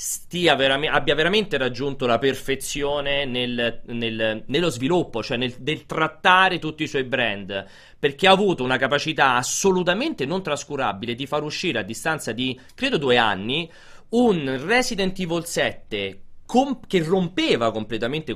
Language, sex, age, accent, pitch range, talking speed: Italian, male, 30-49, native, 120-185 Hz, 140 wpm